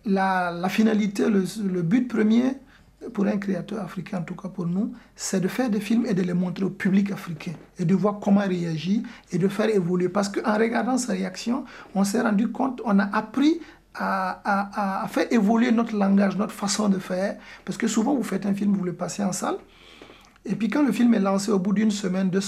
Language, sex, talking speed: French, male, 225 wpm